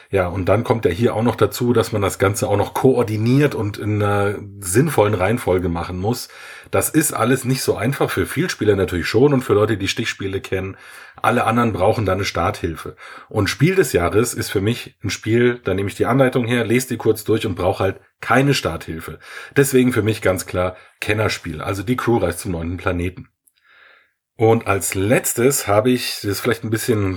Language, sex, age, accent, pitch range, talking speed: German, male, 30-49, German, 95-130 Hz, 205 wpm